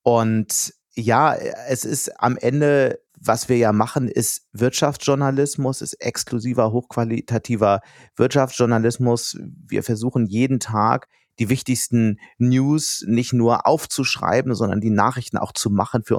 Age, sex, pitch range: 30-49, male, 105-130 Hz